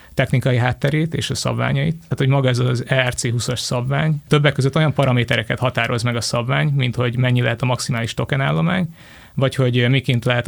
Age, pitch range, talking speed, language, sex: 20-39, 120-135 Hz, 185 wpm, Hungarian, male